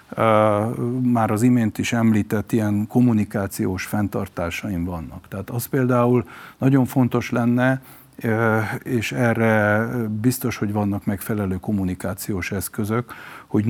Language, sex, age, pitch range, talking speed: Hungarian, male, 50-69, 100-120 Hz, 115 wpm